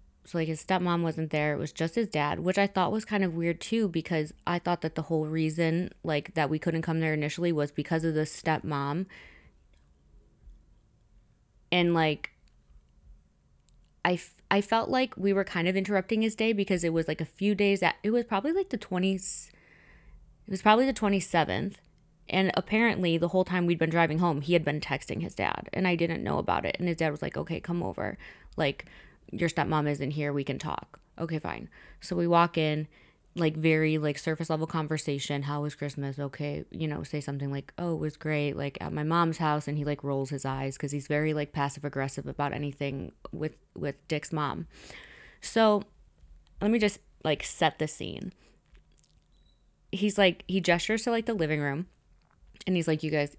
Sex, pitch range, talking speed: female, 145-180 Hz, 200 wpm